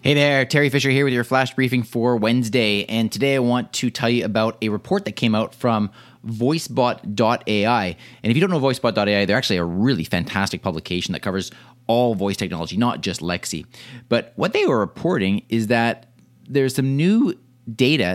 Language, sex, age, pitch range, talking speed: English, male, 30-49, 110-130 Hz, 190 wpm